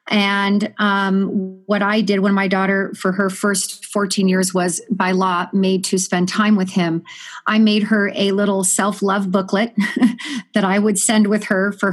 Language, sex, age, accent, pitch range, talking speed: English, female, 40-59, American, 190-215 Hz, 180 wpm